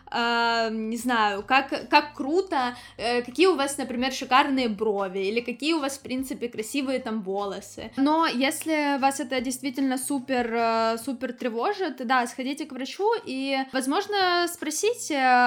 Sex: female